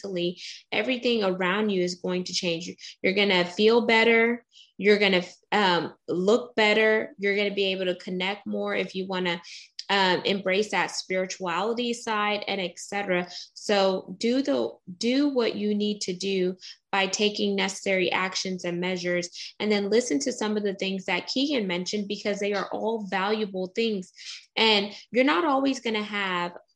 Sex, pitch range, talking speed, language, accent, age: female, 180-215 Hz, 170 wpm, English, American, 20-39